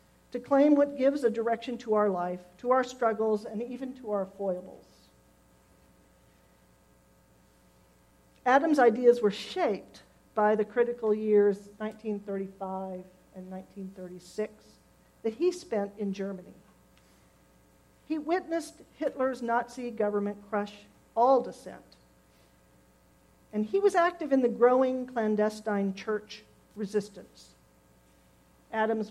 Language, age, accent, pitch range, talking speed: English, 50-69, American, 175-250 Hz, 105 wpm